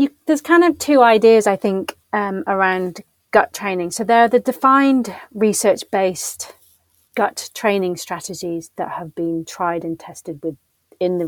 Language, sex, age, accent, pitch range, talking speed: English, female, 30-49, British, 170-205 Hz, 165 wpm